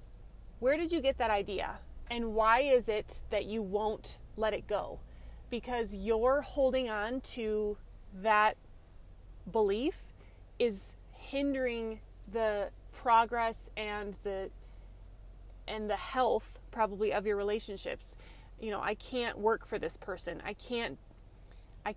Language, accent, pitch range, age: English, American, 190-240 Hz, 20-39